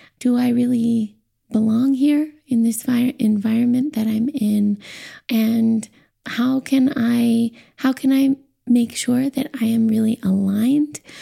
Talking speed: 125 wpm